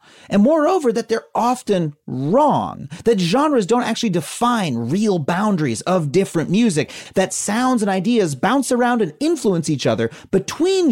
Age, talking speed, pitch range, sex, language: 30-49, 150 wpm, 155-240 Hz, male, English